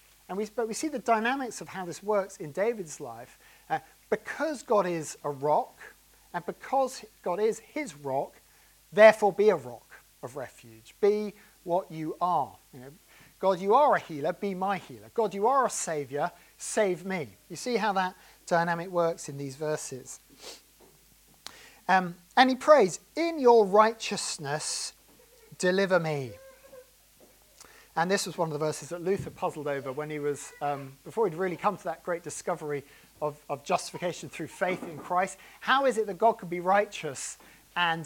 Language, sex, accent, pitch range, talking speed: English, male, British, 155-210 Hz, 165 wpm